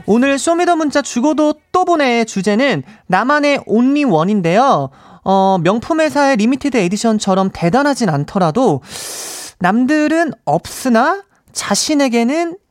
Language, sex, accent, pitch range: Korean, male, native, 205-325 Hz